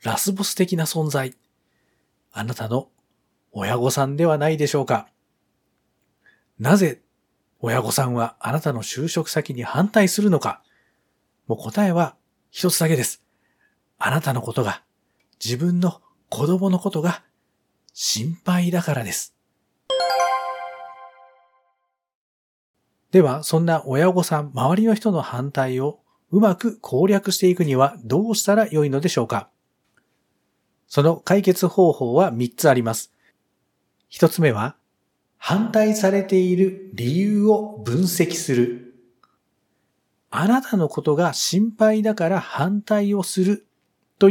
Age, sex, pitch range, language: 40-59, male, 120-190 Hz, Japanese